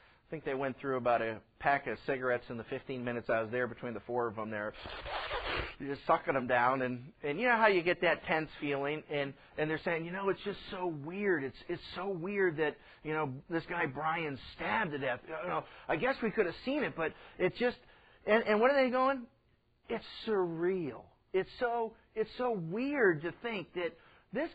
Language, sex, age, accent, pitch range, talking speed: English, male, 40-59, American, 170-240 Hz, 220 wpm